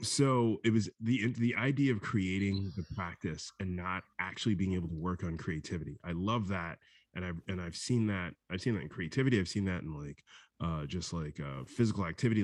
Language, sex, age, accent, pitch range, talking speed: English, male, 20-39, American, 85-105 Hz, 210 wpm